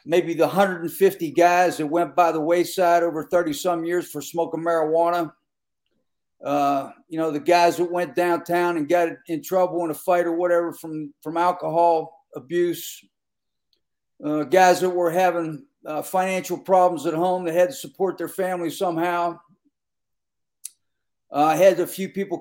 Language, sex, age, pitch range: English, male, 50-69, 160-185 Hz